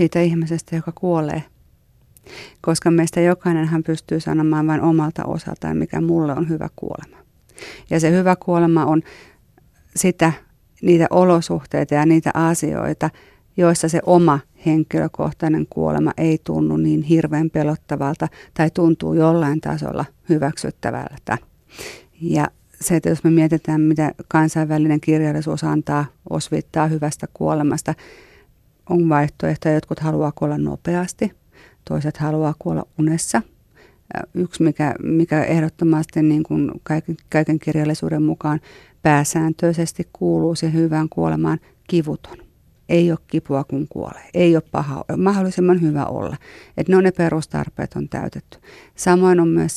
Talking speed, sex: 125 wpm, female